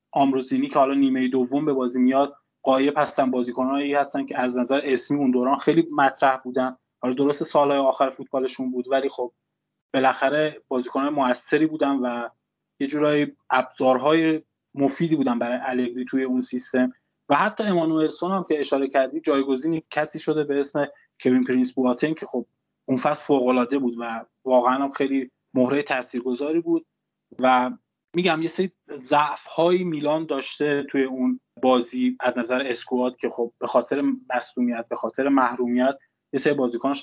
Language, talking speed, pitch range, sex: Persian, 155 wpm, 125-150 Hz, male